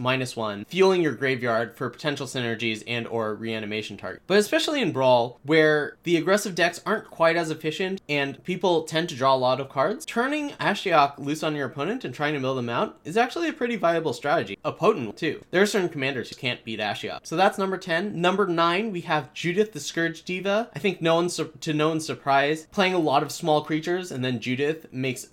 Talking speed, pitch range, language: 220 wpm, 130-175 Hz, English